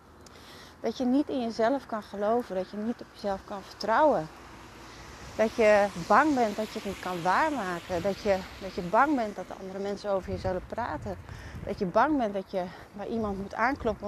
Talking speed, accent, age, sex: 205 wpm, Dutch, 30-49, female